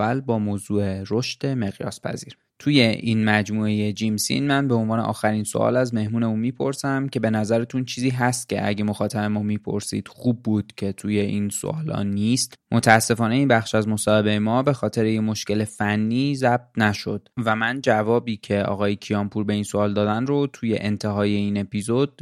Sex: male